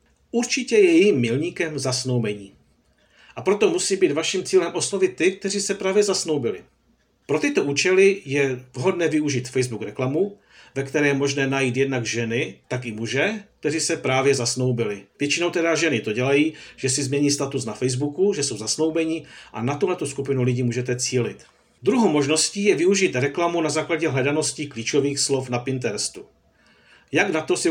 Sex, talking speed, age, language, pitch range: male, 165 wpm, 50-69, Czech, 125-160 Hz